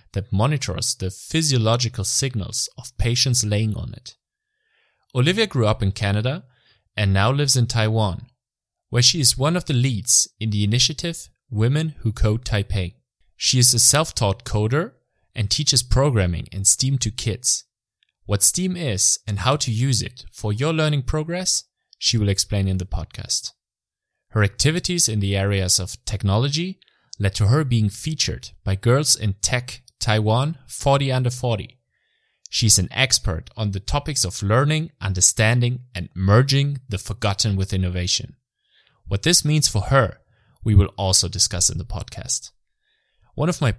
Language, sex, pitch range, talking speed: English, male, 100-130 Hz, 155 wpm